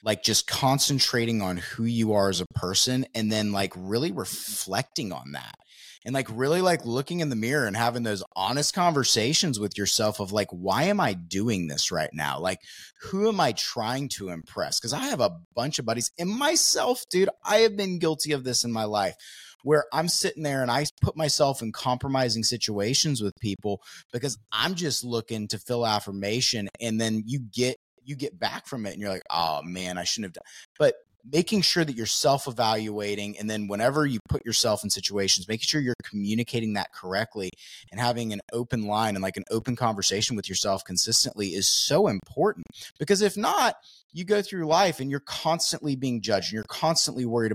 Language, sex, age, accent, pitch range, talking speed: English, male, 30-49, American, 105-150 Hz, 200 wpm